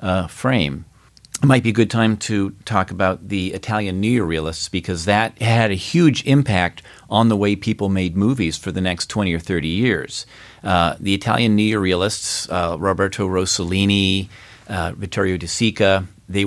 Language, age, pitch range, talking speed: English, 40-59, 95-110 Hz, 175 wpm